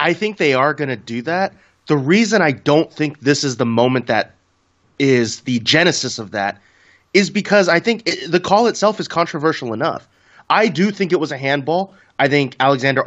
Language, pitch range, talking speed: English, 125-165 Hz, 195 wpm